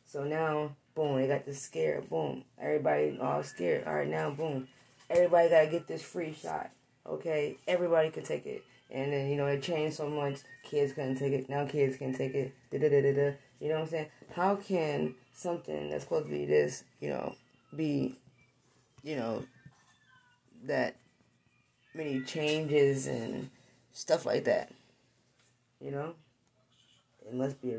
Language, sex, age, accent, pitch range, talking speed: English, female, 10-29, American, 130-150 Hz, 165 wpm